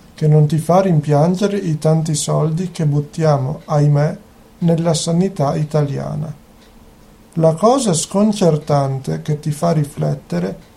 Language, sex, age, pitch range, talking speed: Italian, male, 50-69, 155-185 Hz, 115 wpm